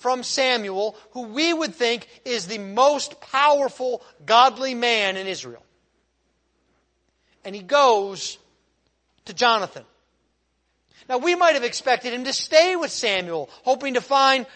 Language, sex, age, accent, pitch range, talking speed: English, male, 40-59, American, 215-295 Hz, 130 wpm